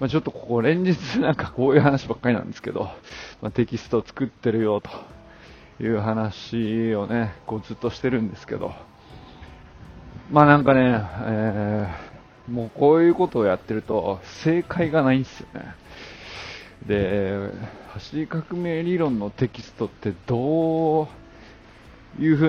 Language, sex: Japanese, male